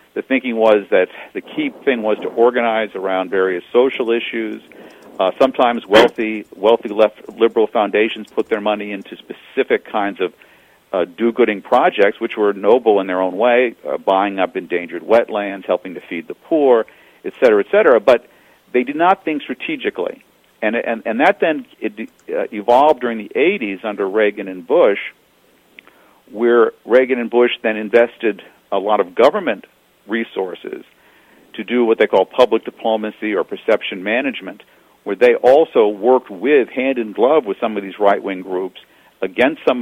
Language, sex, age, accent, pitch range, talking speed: English, male, 50-69, American, 100-155 Hz, 165 wpm